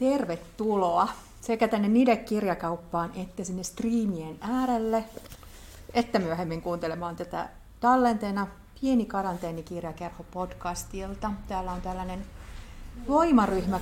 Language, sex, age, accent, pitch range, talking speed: Finnish, female, 40-59, native, 175-230 Hz, 85 wpm